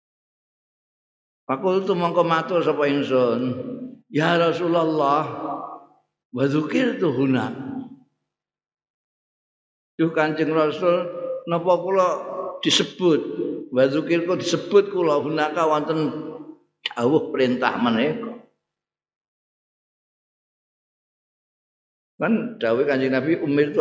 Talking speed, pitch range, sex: 75 wpm, 130-195 Hz, male